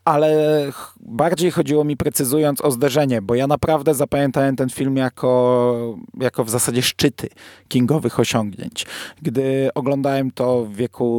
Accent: native